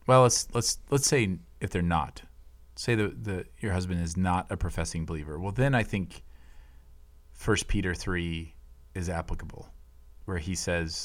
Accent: American